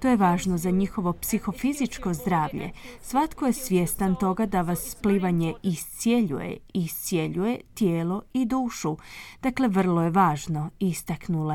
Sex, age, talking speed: female, 20-39, 125 wpm